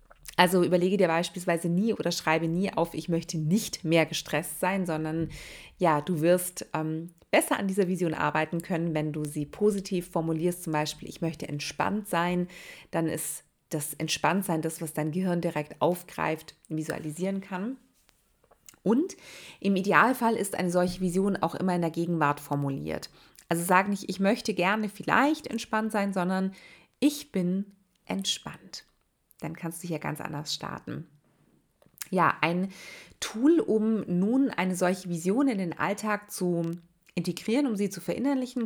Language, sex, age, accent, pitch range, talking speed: German, female, 30-49, German, 160-205 Hz, 155 wpm